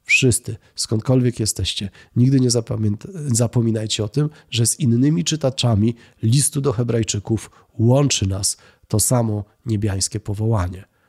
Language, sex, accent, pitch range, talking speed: Polish, male, native, 105-125 Hz, 115 wpm